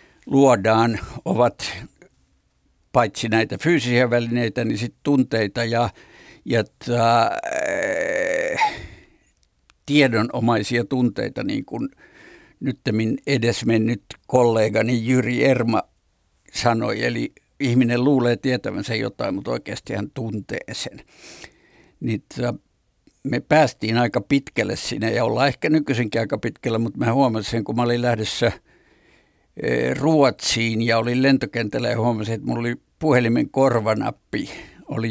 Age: 60-79